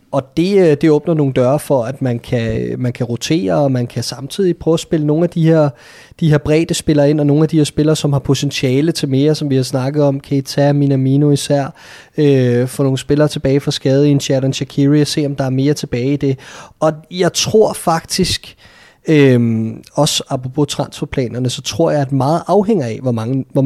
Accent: native